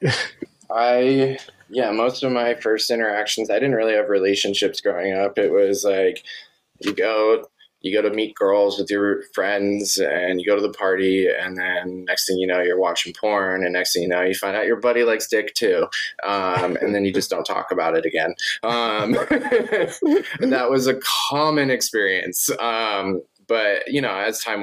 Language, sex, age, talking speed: English, male, 20-39, 190 wpm